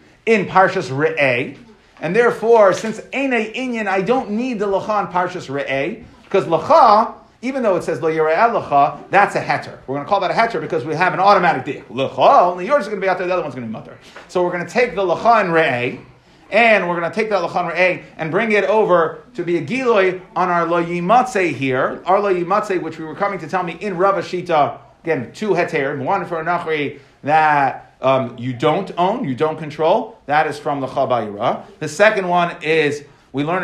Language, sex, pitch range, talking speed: English, male, 160-210 Hz, 210 wpm